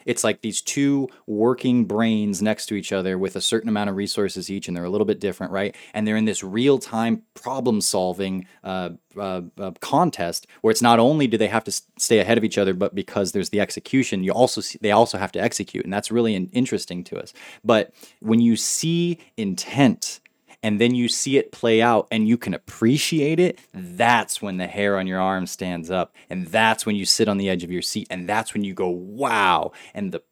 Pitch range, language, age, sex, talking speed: 100-120 Hz, English, 20-39, male, 220 wpm